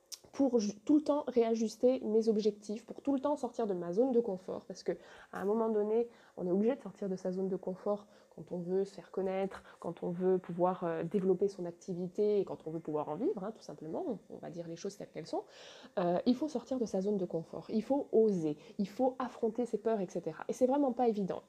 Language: French